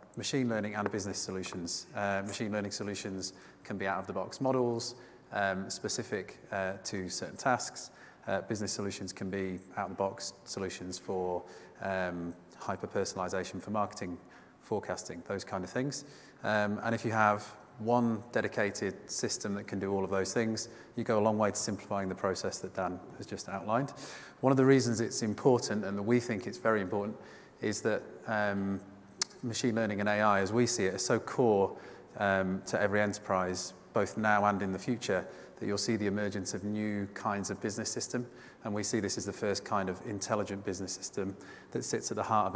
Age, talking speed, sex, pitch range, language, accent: 30-49, 185 wpm, male, 95-115 Hz, English, British